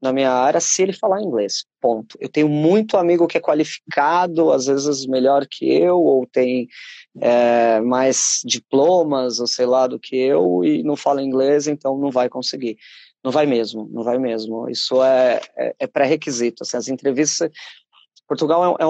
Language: Portuguese